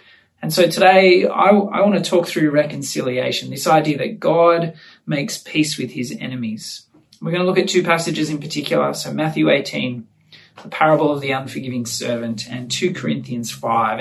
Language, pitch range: English, 125-175 Hz